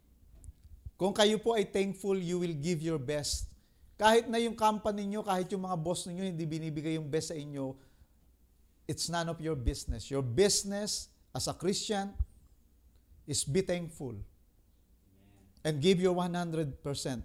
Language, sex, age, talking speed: English, male, 50-69, 145 wpm